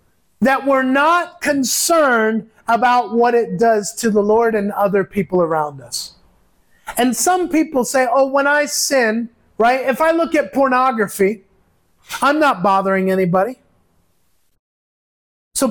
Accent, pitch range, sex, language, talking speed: American, 210-280 Hz, male, English, 135 wpm